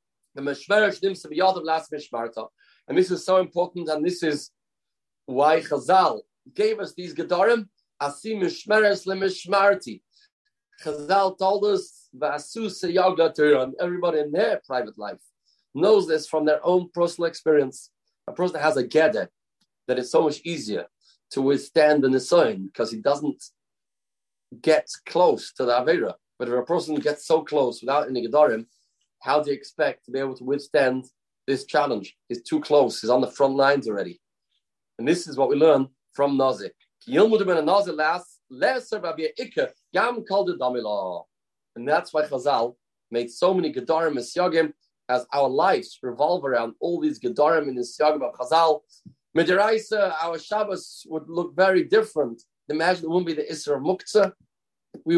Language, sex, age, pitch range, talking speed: English, male, 40-59, 140-185 Hz, 135 wpm